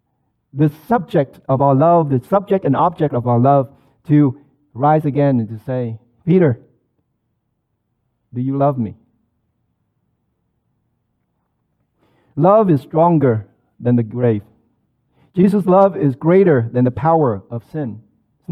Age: 50-69